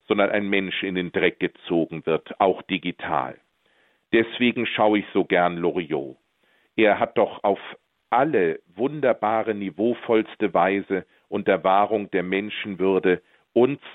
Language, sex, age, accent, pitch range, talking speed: German, male, 50-69, German, 90-110 Hz, 130 wpm